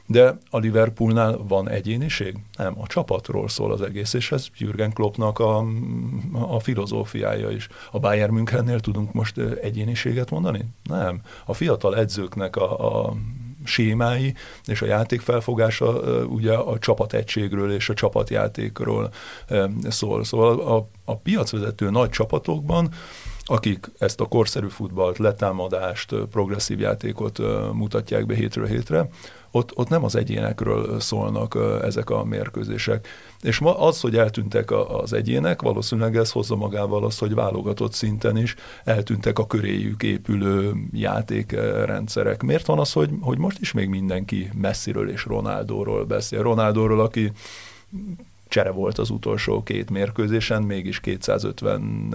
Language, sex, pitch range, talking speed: Hungarian, male, 105-120 Hz, 130 wpm